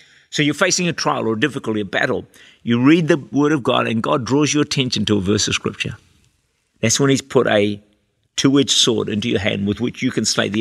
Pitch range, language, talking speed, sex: 110-145 Hz, English, 240 wpm, male